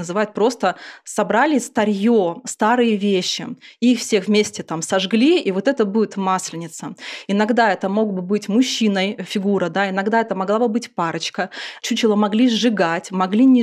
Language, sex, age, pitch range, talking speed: Russian, female, 20-39, 190-230 Hz, 160 wpm